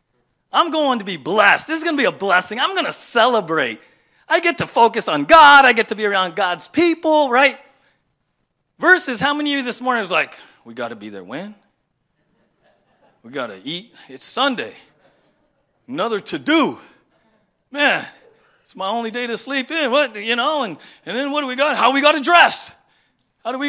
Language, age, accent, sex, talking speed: English, 40-59, American, male, 205 wpm